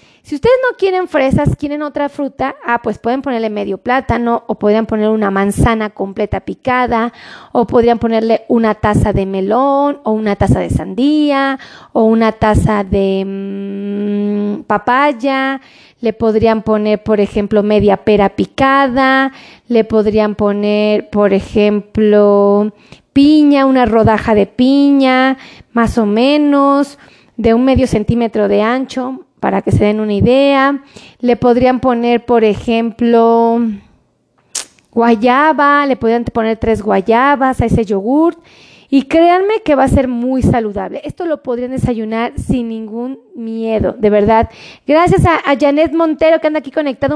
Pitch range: 220-280 Hz